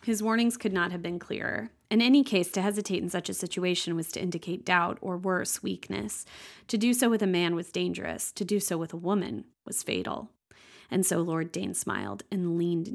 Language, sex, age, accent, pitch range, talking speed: English, female, 20-39, American, 175-205 Hz, 215 wpm